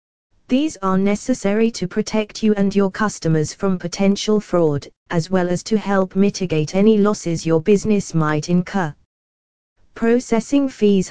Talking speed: 140 wpm